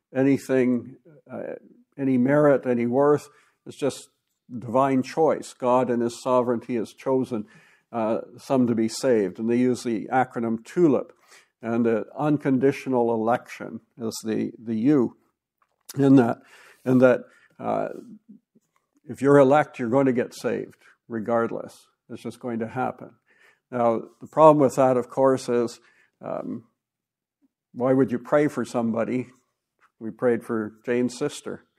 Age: 60-79